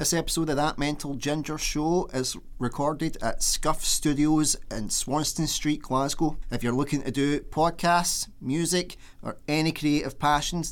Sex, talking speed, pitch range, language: male, 150 wpm, 125-160 Hz, English